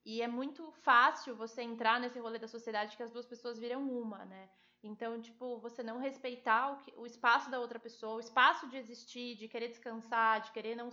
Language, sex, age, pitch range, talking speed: Portuguese, female, 20-39, 235-290 Hz, 210 wpm